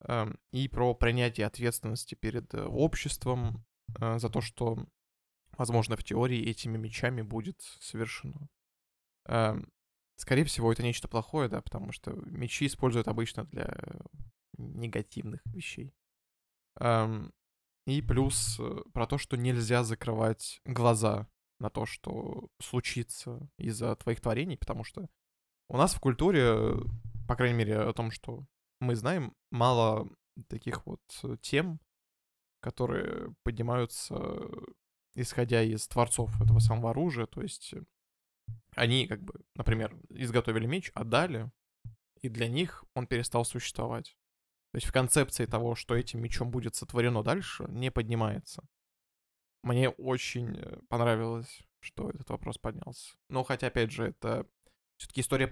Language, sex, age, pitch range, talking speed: Russian, male, 20-39, 110-125 Hz, 120 wpm